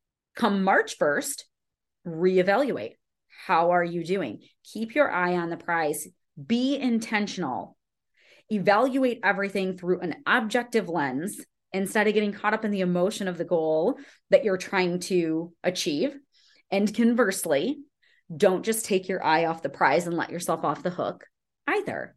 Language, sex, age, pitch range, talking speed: English, female, 30-49, 180-255 Hz, 150 wpm